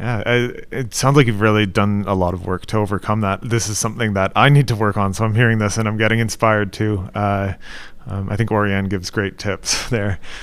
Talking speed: 235 wpm